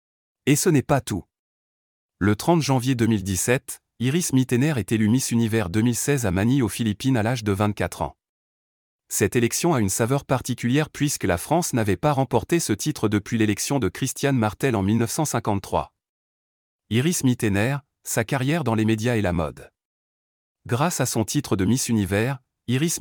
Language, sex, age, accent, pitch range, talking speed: French, male, 30-49, French, 105-130 Hz, 165 wpm